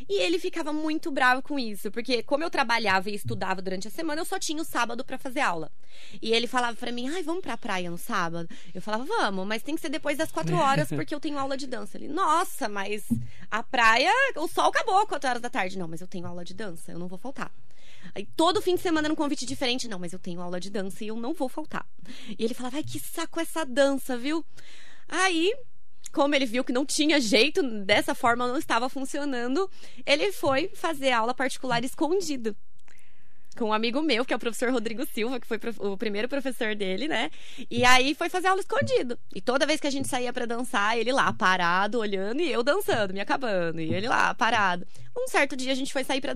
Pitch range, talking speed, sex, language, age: 215-305 Hz, 230 wpm, female, Portuguese, 20-39